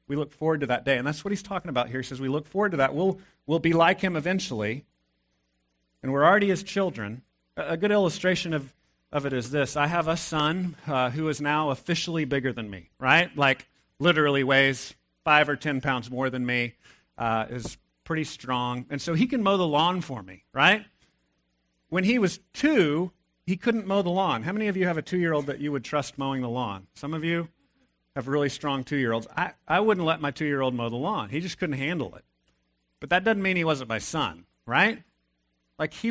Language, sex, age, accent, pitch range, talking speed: English, male, 40-59, American, 125-185 Hz, 220 wpm